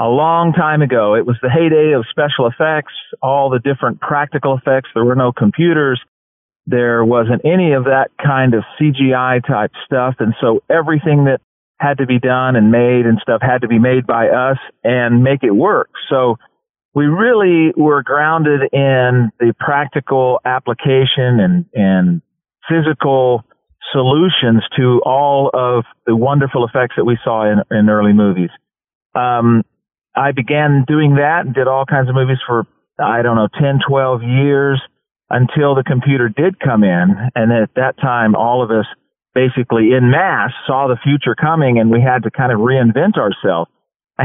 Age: 40-59